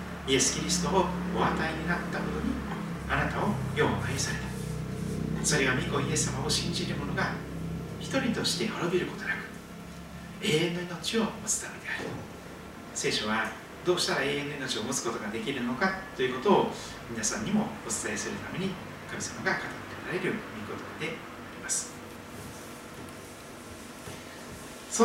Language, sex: Japanese, male